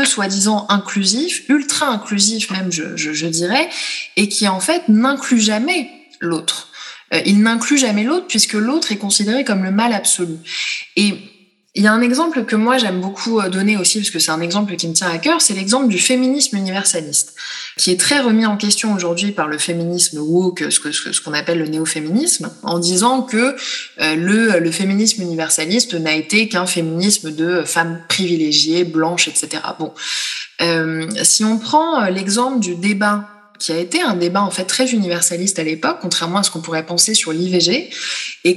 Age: 20-39